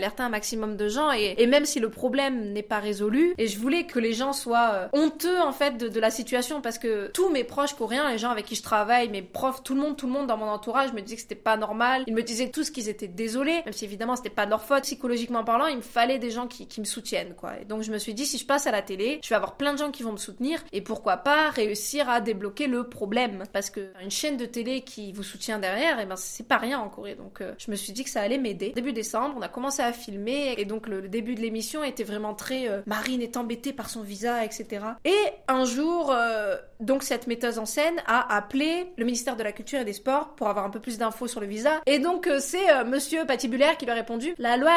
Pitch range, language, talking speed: 220-280 Hz, French, 280 wpm